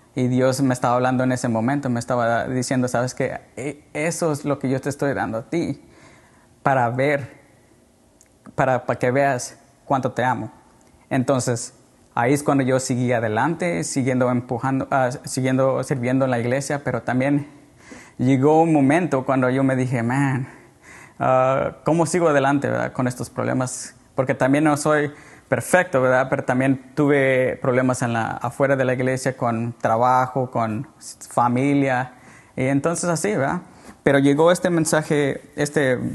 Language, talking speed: Spanish, 155 wpm